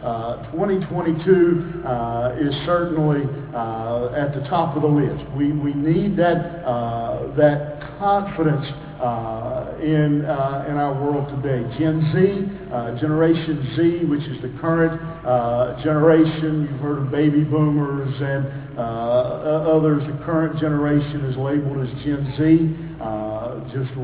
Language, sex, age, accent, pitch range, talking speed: English, male, 50-69, American, 130-160 Hz, 135 wpm